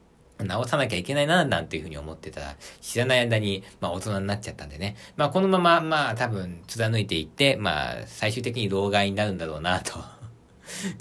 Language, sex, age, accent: Japanese, male, 40-59, native